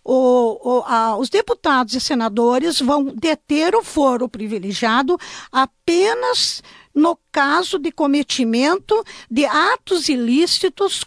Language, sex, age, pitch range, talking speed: Portuguese, female, 50-69, 265-355 Hz, 110 wpm